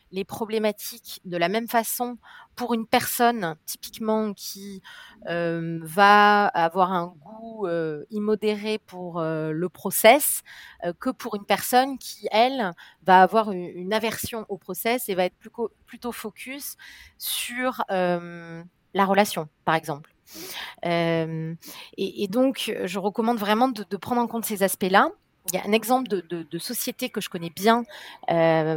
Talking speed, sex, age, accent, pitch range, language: 160 wpm, female, 30-49, French, 180-230 Hz, French